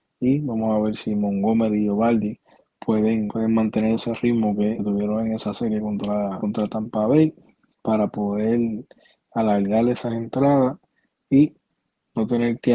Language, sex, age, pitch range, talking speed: Spanish, male, 20-39, 105-120 Hz, 145 wpm